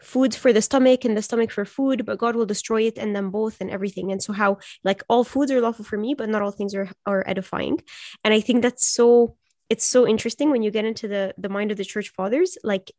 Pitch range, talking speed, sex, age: 205-240 Hz, 260 wpm, female, 20-39